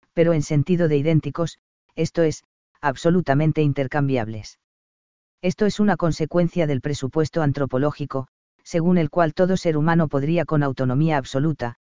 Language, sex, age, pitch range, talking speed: Spanish, female, 40-59, 140-170 Hz, 130 wpm